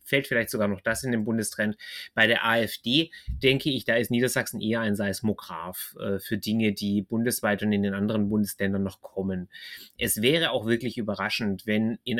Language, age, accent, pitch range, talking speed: German, 30-49, German, 105-120 Hz, 185 wpm